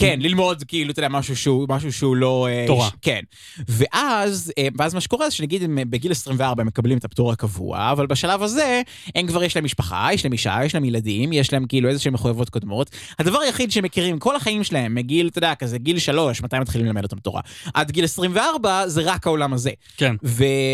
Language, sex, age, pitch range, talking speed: Hebrew, male, 20-39, 125-175 Hz, 195 wpm